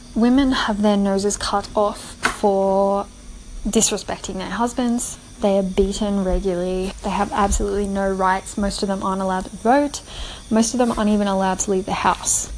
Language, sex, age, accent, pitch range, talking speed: English, female, 10-29, Australian, 195-220 Hz, 170 wpm